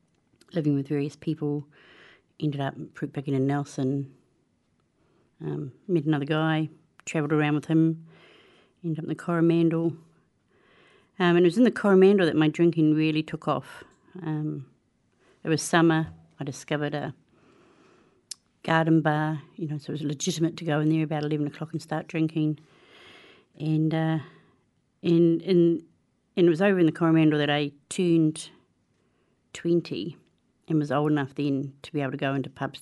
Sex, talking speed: female, 160 wpm